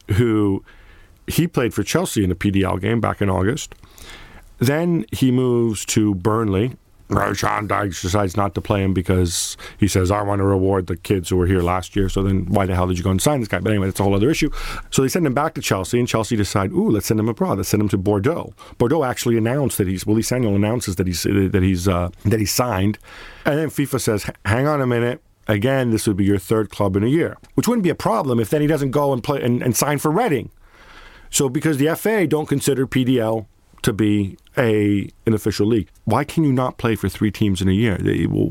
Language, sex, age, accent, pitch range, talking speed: English, male, 50-69, American, 95-120 Hz, 240 wpm